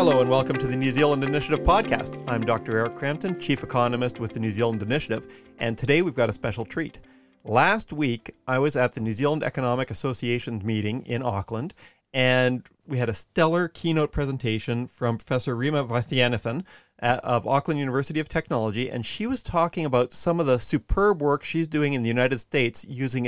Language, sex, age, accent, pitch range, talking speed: English, male, 40-59, American, 120-155 Hz, 190 wpm